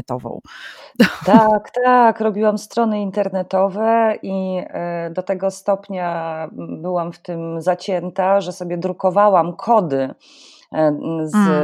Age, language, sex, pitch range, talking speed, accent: 30-49, Polish, female, 170-205 Hz, 95 wpm, native